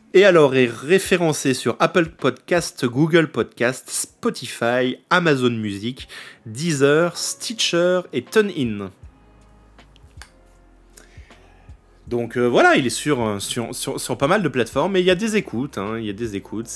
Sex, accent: male, French